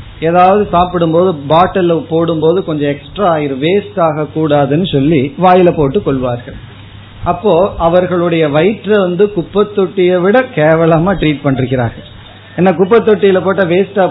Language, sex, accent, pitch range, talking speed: Tamil, male, native, 145-185 Hz, 120 wpm